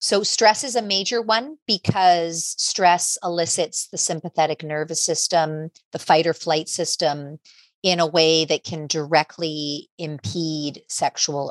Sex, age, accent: female, 40-59, American